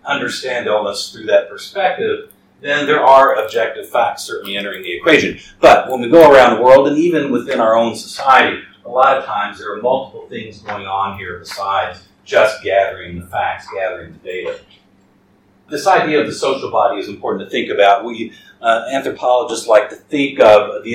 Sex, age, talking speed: male, 50-69, 185 wpm